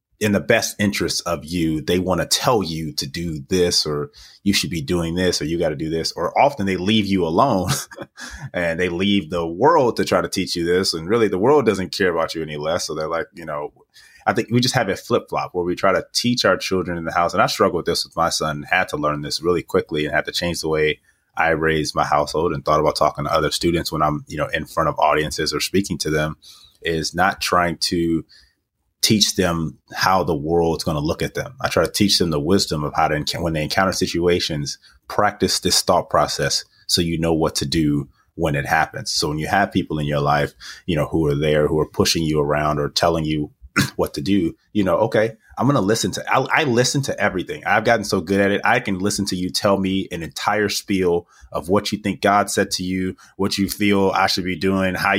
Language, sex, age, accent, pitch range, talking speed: English, male, 30-49, American, 80-95 Hz, 250 wpm